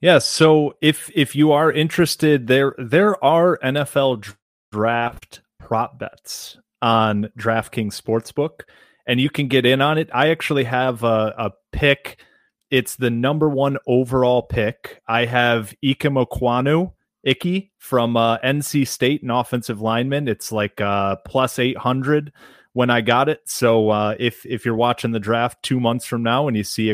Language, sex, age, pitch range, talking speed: English, male, 30-49, 110-145 Hz, 165 wpm